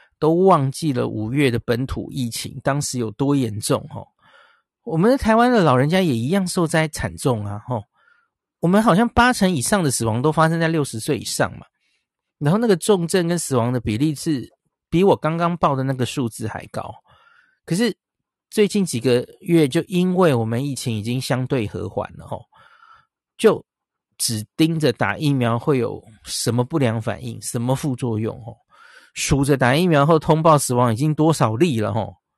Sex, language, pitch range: male, Chinese, 125-185 Hz